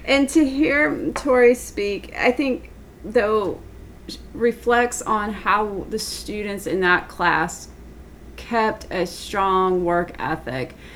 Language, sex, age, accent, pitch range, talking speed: English, female, 30-49, American, 180-220 Hz, 115 wpm